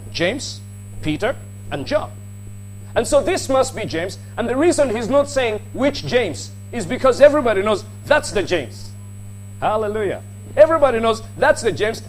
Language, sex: English, male